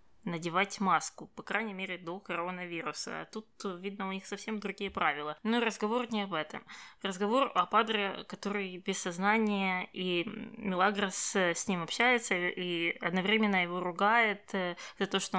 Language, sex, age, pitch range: Russian, female, 20-39, 175-205 Hz